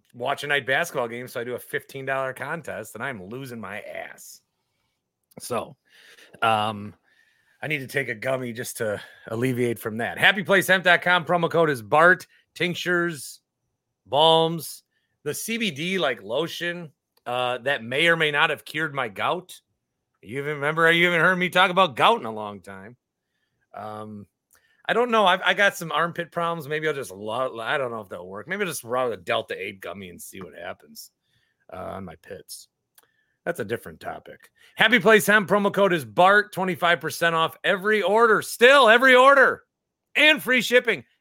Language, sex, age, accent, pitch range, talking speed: English, male, 30-49, American, 125-190 Hz, 175 wpm